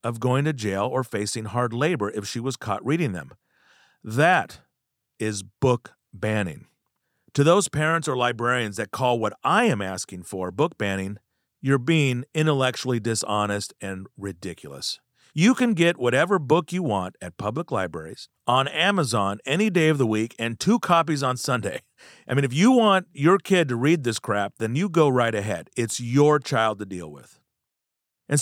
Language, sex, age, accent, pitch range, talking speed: English, male, 40-59, American, 110-150 Hz, 175 wpm